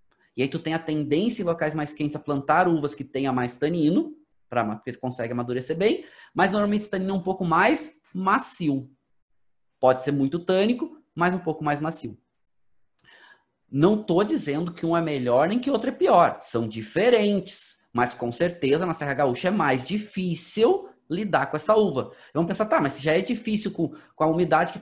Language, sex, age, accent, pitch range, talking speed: Portuguese, male, 20-39, Brazilian, 140-205 Hz, 195 wpm